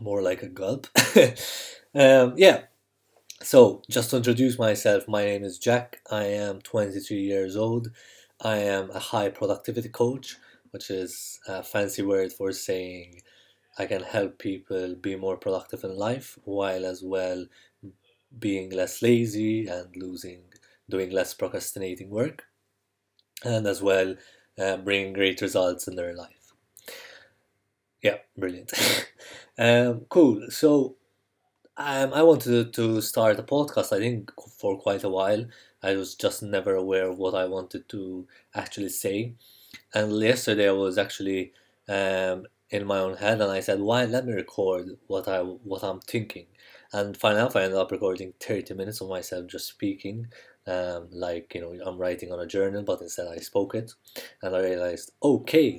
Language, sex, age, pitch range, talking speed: English, male, 20-39, 95-110 Hz, 160 wpm